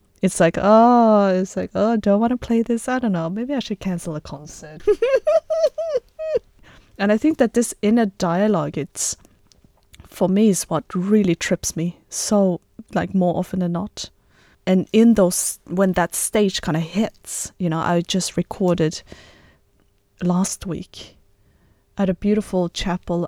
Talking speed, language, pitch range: 160 wpm, English, 160-195 Hz